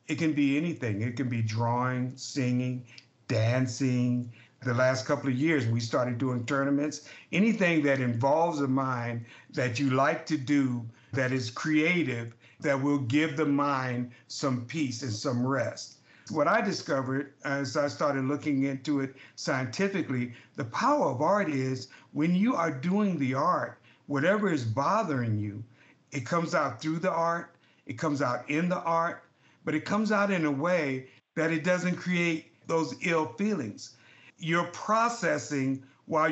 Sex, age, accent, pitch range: male, 60-79, American, 125-160 Hz